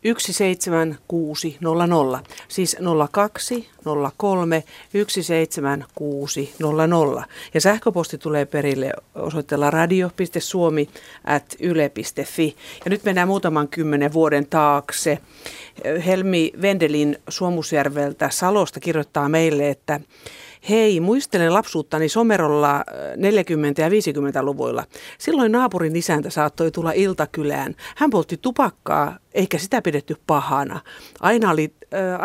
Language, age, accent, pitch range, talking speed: Finnish, 50-69, native, 150-195 Hz, 90 wpm